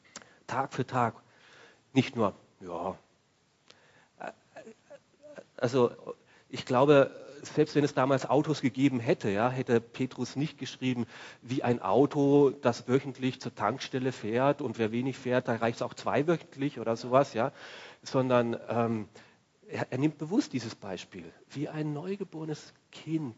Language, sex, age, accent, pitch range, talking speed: German, male, 40-59, German, 125-165 Hz, 135 wpm